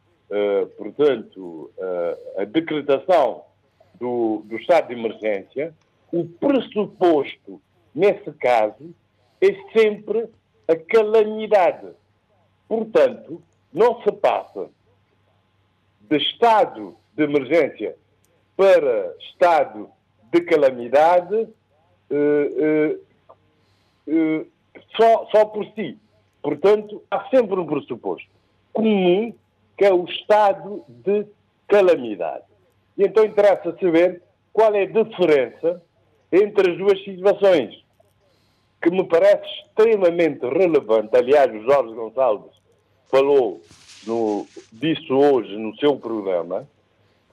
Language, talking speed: Portuguese, 90 wpm